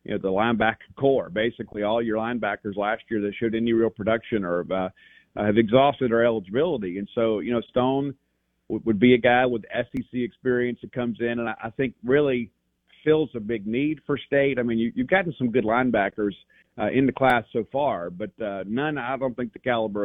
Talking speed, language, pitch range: 215 wpm, English, 110-130 Hz